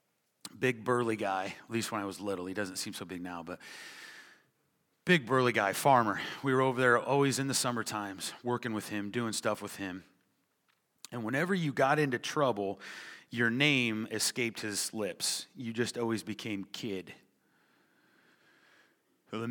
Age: 30-49